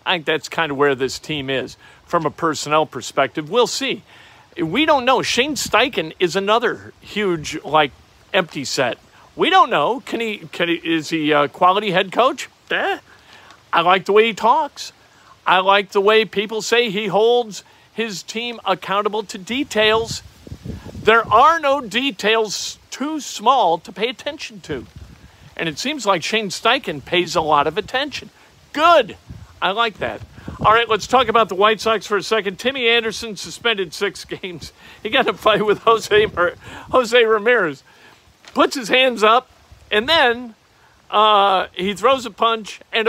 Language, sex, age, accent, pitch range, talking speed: English, male, 50-69, American, 175-230 Hz, 170 wpm